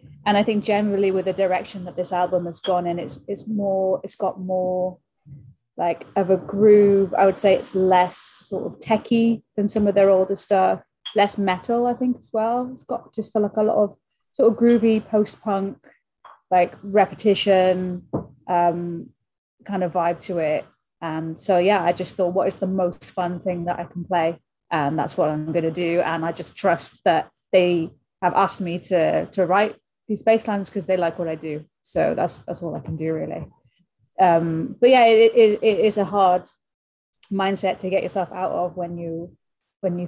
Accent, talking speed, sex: British, 200 wpm, female